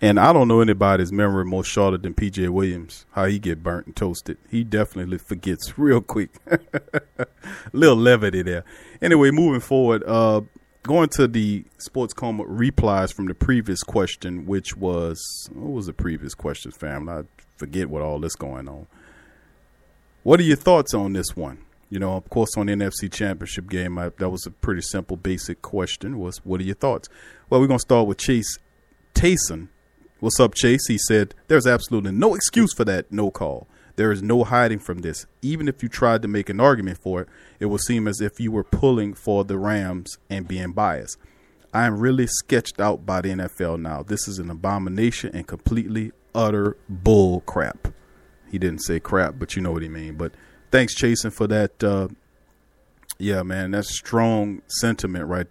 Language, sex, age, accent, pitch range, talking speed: English, male, 40-59, American, 90-115 Hz, 190 wpm